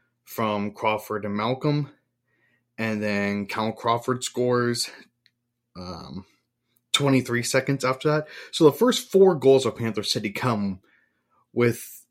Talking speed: 120 wpm